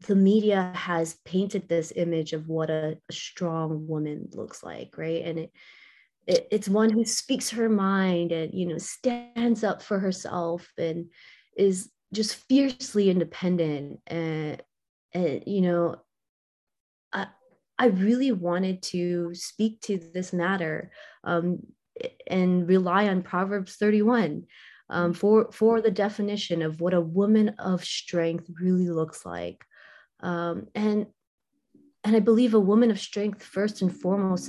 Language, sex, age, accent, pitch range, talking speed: English, female, 20-39, American, 175-215 Hz, 145 wpm